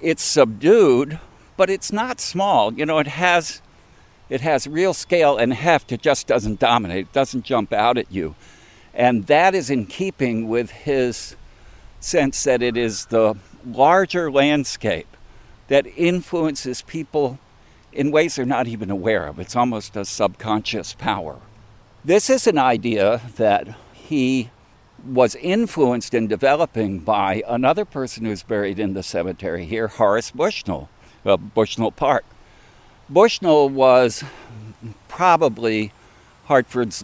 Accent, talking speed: American, 135 wpm